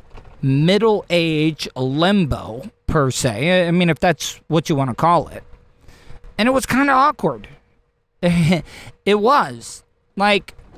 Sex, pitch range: male, 130-175 Hz